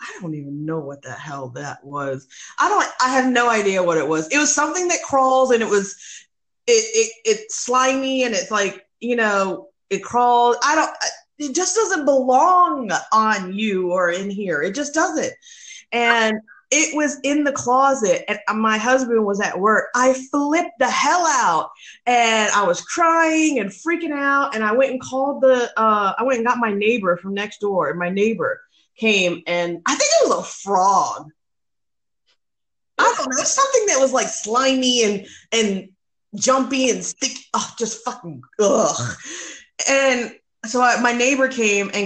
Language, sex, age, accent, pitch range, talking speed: English, female, 30-49, American, 195-265 Hz, 185 wpm